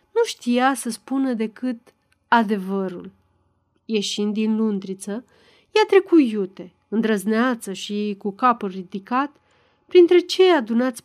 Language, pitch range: Romanian, 205-285 Hz